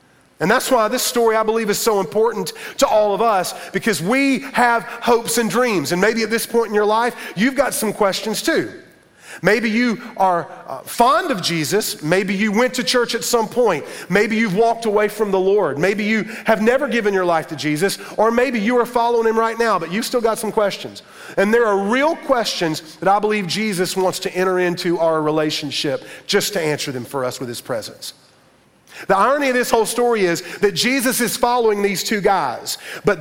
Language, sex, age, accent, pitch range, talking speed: English, male, 40-59, American, 185-235 Hz, 210 wpm